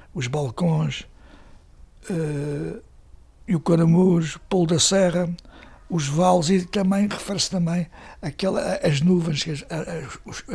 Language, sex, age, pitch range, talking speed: Portuguese, male, 60-79, 150-190 Hz, 95 wpm